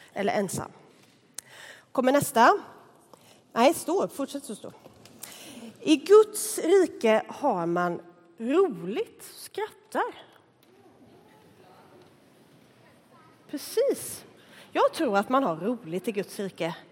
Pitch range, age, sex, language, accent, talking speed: 225-360 Hz, 30-49, female, Swedish, native, 95 wpm